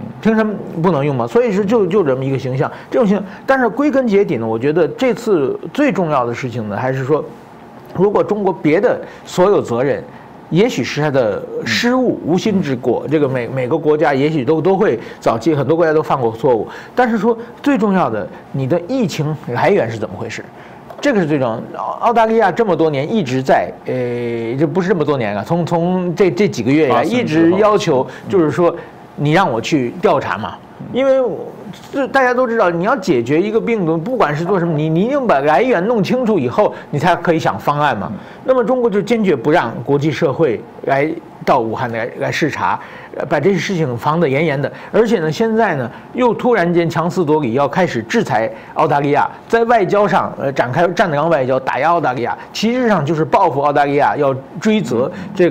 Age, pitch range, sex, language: 50-69, 145-225 Hz, male, Chinese